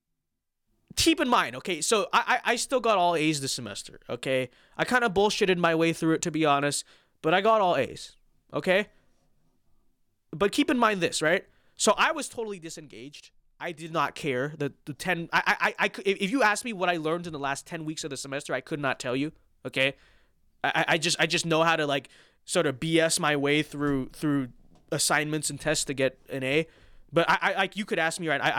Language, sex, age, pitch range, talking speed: English, male, 20-39, 145-200 Hz, 225 wpm